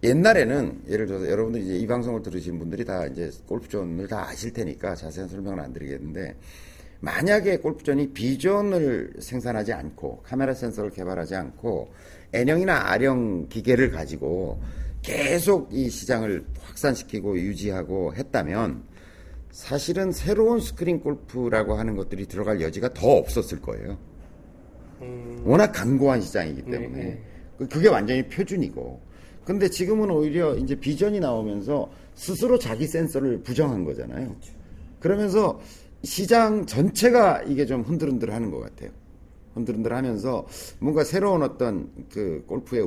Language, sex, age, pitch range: Korean, male, 50-69, 95-155 Hz